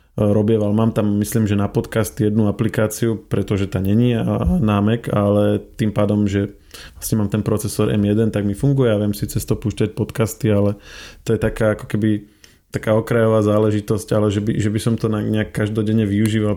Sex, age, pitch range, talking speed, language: male, 20-39, 105-120 Hz, 175 wpm, Slovak